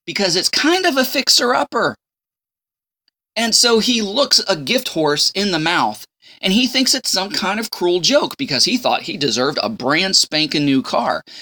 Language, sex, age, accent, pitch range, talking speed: English, male, 20-39, American, 140-215 Hz, 185 wpm